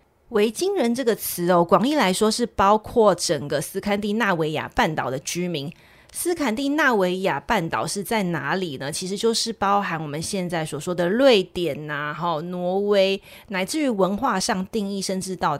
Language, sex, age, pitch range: Chinese, female, 30-49, 165-210 Hz